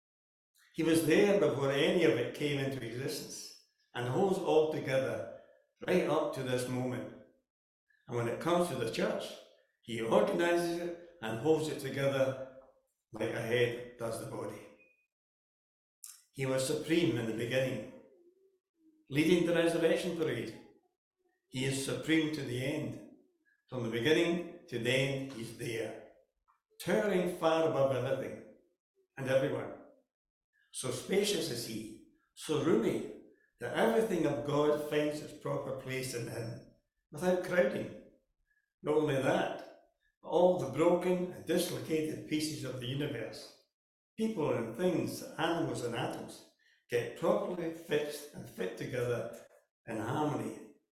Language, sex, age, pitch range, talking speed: English, male, 60-79, 130-180 Hz, 135 wpm